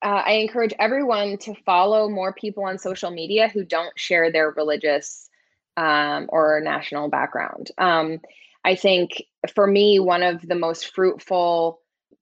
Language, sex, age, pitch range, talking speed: English, female, 20-39, 170-215 Hz, 145 wpm